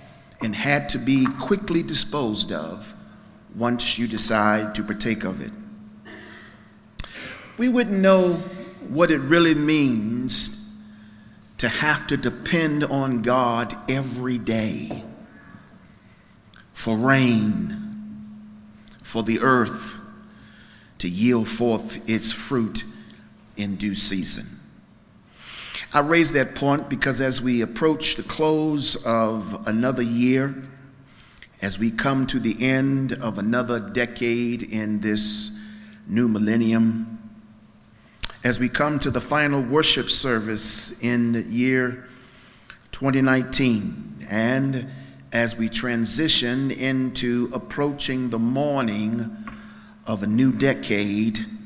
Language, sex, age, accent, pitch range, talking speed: English, male, 50-69, American, 110-145 Hz, 105 wpm